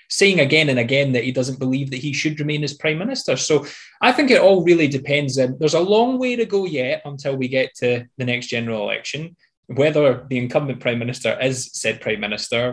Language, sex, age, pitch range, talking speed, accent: English, male, 20-39, 115-145 Hz, 215 wpm, British